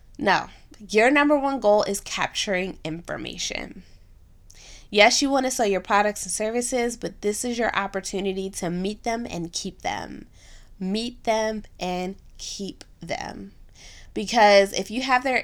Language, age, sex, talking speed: English, 20-39, female, 150 wpm